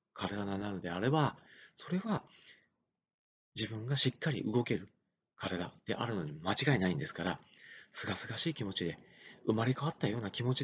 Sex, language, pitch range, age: male, Japanese, 105-135 Hz, 40-59